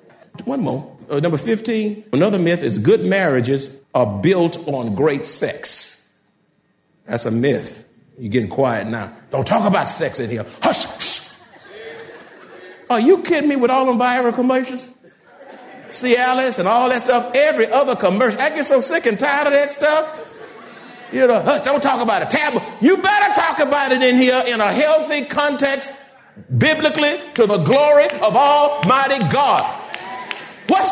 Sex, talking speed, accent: male, 165 wpm, American